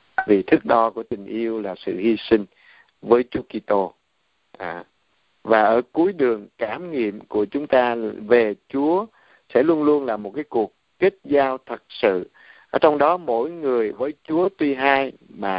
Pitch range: 115-155 Hz